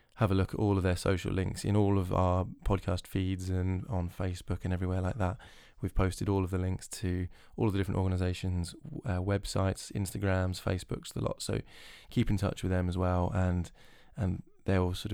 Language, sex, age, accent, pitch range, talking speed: English, male, 20-39, British, 90-100 Hz, 210 wpm